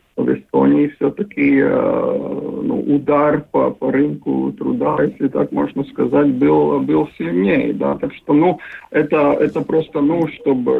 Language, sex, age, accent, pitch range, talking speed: Russian, male, 50-69, native, 140-170 Hz, 135 wpm